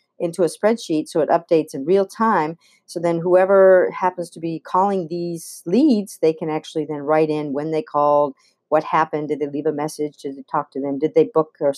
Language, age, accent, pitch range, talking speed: English, 50-69, American, 150-175 Hz, 220 wpm